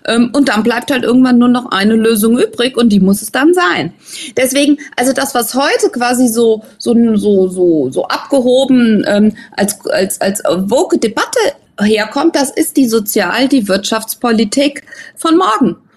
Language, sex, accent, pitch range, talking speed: German, female, German, 215-280 Hz, 160 wpm